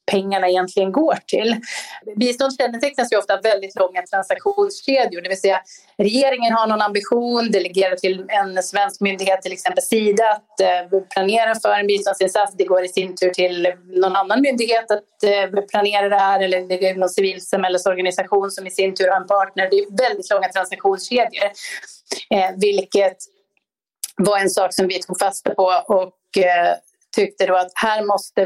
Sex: female